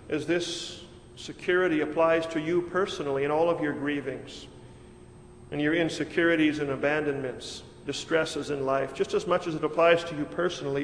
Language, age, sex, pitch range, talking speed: English, 50-69, male, 160-180 Hz, 160 wpm